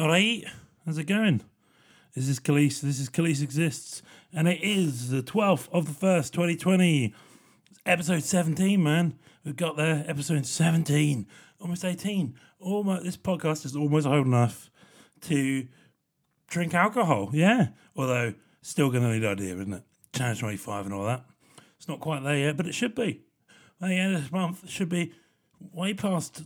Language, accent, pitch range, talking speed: English, British, 130-175 Hz, 170 wpm